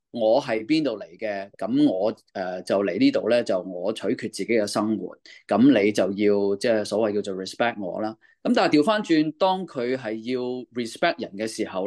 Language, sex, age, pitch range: Chinese, male, 20-39, 105-140 Hz